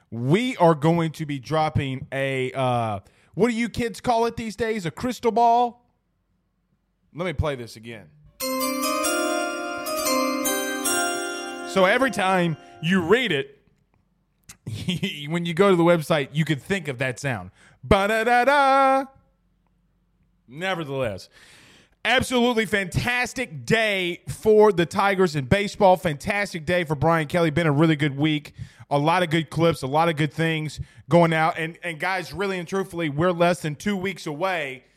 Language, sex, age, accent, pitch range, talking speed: English, male, 20-39, American, 150-195 Hz, 150 wpm